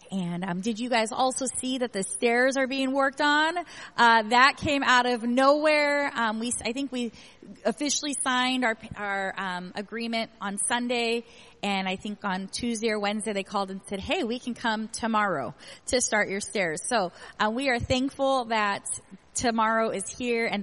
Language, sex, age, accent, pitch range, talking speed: English, female, 30-49, American, 200-255 Hz, 185 wpm